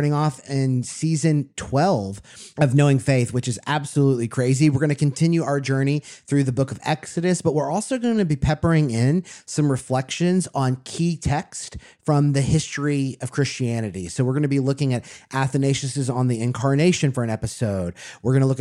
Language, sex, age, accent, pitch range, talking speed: English, male, 30-49, American, 130-155 Hz, 185 wpm